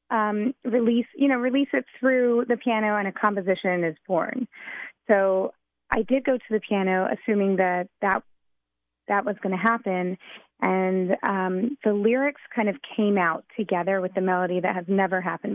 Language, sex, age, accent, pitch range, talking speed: English, female, 20-39, American, 185-220 Hz, 175 wpm